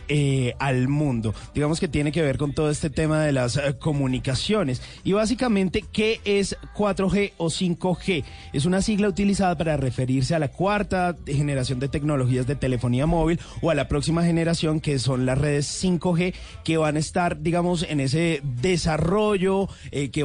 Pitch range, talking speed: 140-170 Hz, 170 wpm